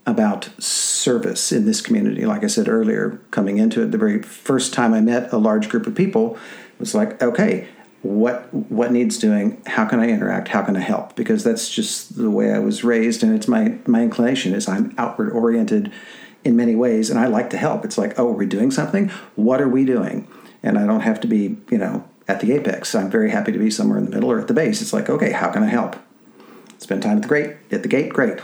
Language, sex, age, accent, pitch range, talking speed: English, male, 50-69, American, 215-225 Hz, 240 wpm